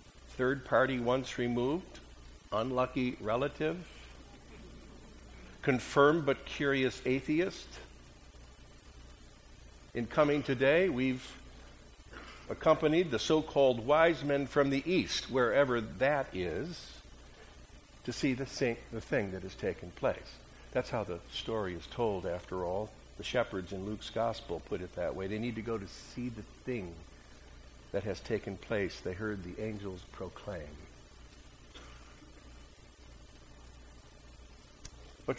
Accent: American